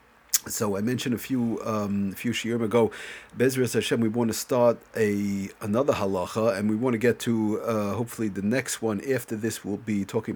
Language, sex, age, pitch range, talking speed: English, male, 40-59, 105-120 Hz, 205 wpm